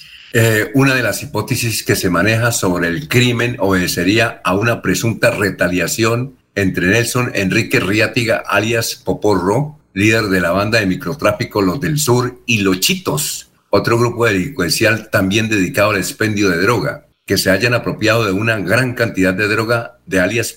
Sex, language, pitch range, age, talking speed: male, Spanish, 95-120 Hz, 50-69, 160 wpm